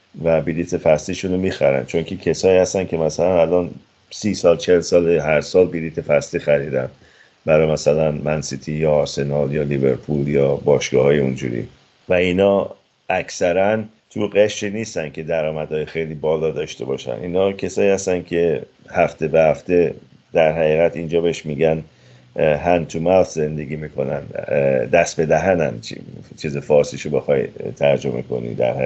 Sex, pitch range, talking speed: male, 75-100 Hz, 145 wpm